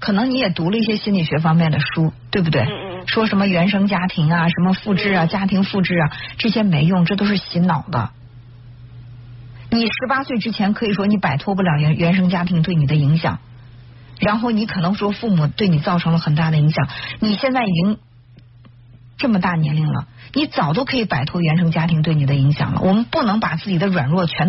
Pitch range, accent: 150-210 Hz, native